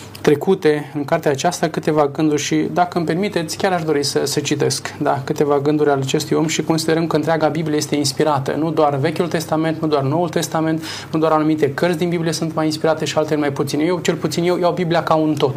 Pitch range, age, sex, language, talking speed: 150-175 Hz, 20-39, male, Romanian, 225 wpm